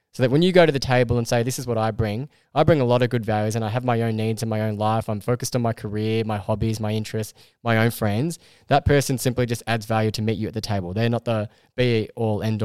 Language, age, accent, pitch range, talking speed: English, 10-29, Australian, 115-145 Hz, 295 wpm